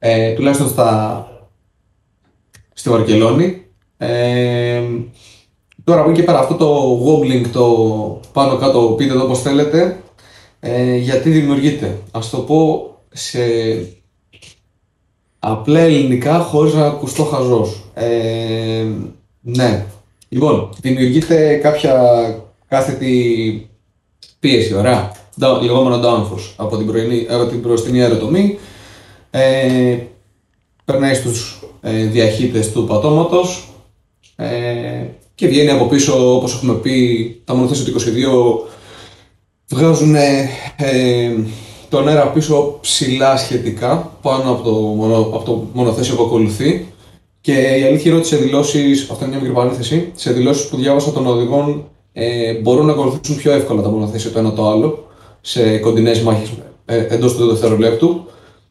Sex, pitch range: male, 110-140 Hz